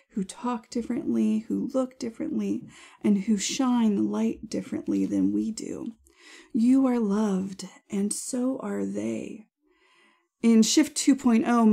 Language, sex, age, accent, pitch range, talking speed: English, female, 30-49, American, 200-255 Hz, 130 wpm